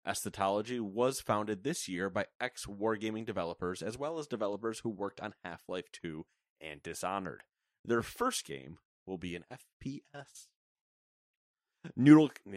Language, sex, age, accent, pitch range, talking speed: English, male, 30-49, American, 100-135 Hz, 130 wpm